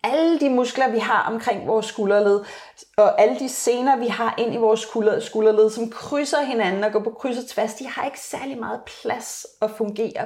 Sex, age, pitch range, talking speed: female, 30-49, 185-235 Hz, 205 wpm